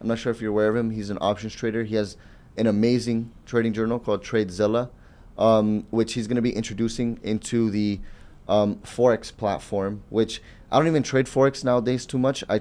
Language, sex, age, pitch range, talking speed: English, male, 30-49, 100-115 Hz, 200 wpm